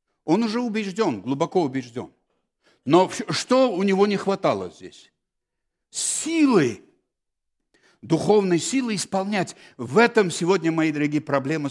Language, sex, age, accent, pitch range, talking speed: Russian, male, 60-79, native, 140-195 Hz, 115 wpm